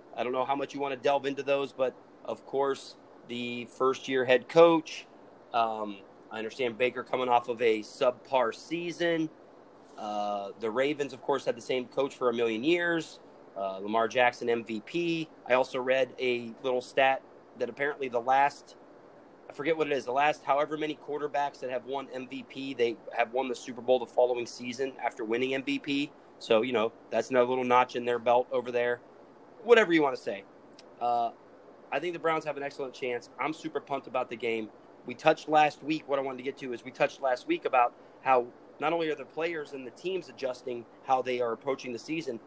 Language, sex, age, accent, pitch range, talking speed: English, male, 30-49, American, 125-145 Hz, 205 wpm